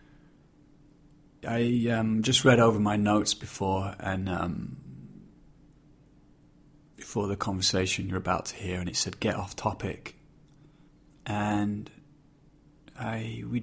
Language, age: English, 30-49